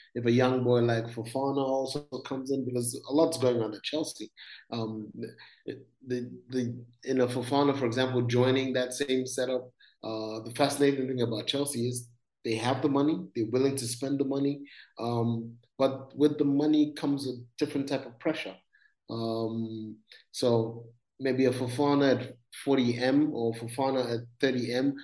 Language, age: English, 30-49